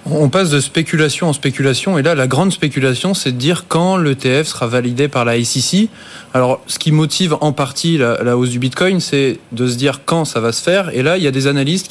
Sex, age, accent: male, 20-39, French